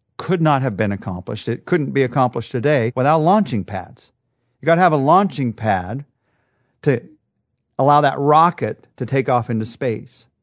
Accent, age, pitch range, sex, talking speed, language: American, 40-59, 115-145 Hz, male, 165 wpm, English